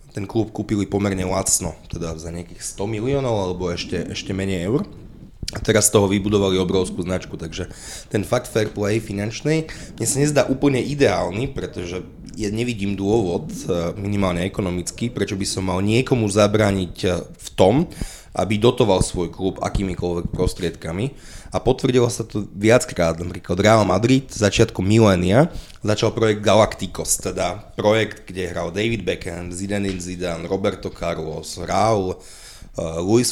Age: 20-39